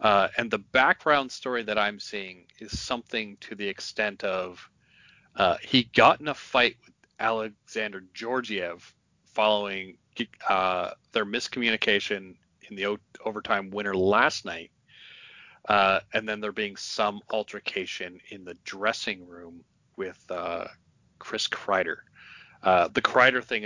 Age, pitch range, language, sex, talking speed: 40-59, 95-130 Hz, English, male, 130 wpm